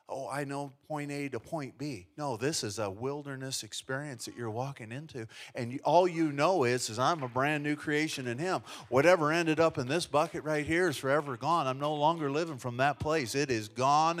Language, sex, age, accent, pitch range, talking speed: English, male, 40-59, American, 120-175 Hz, 220 wpm